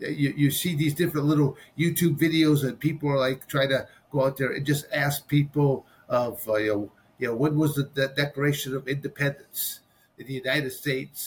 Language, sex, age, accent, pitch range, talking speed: English, male, 50-69, American, 130-150 Hz, 200 wpm